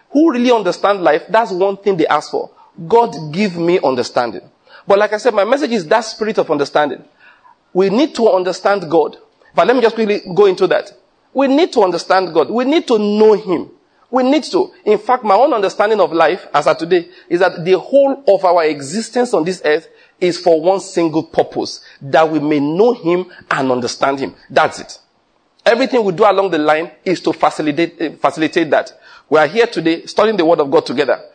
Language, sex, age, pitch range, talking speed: English, male, 40-59, 165-235 Hz, 205 wpm